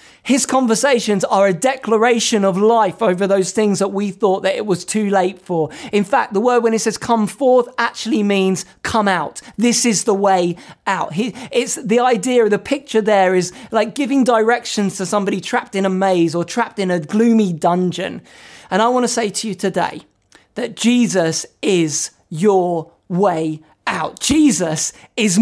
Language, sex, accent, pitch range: English, male, British, 185-240 Hz